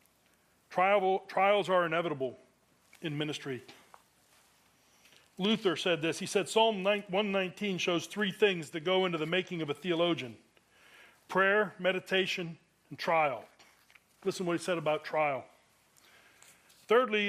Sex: male